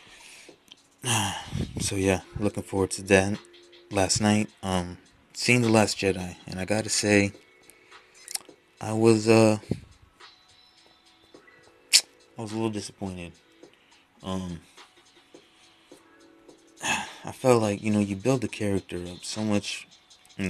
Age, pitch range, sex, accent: 20-39, 90-110 Hz, male, American